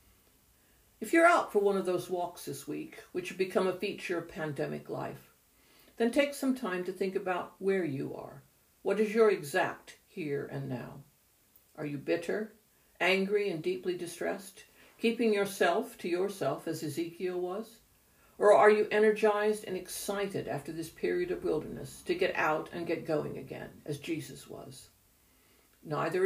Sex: female